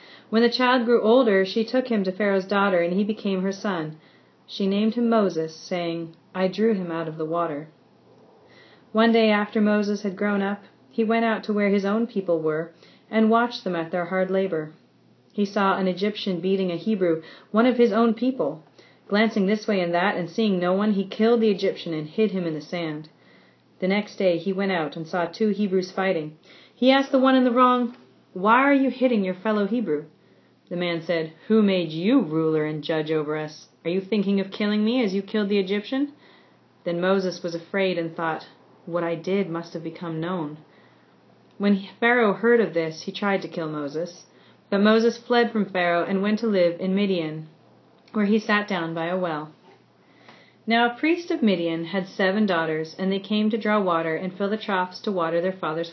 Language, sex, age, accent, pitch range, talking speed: English, female, 30-49, American, 170-220 Hz, 205 wpm